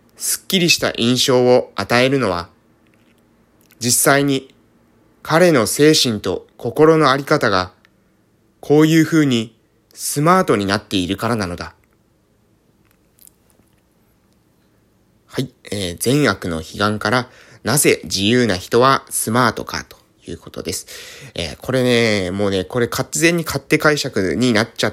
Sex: male